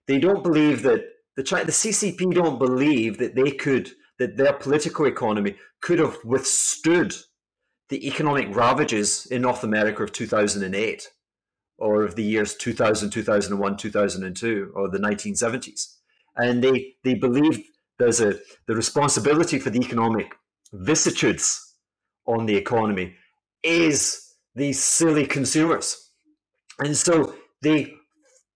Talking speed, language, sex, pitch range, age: 120 wpm, English, male, 115-160 Hz, 30-49